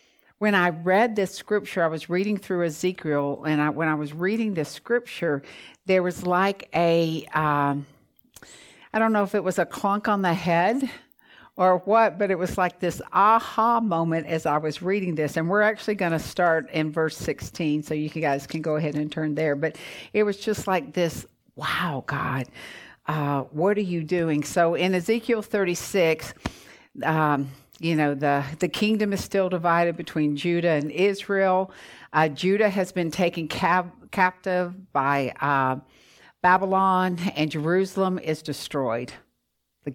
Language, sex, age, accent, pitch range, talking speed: English, female, 50-69, American, 150-190 Hz, 165 wpm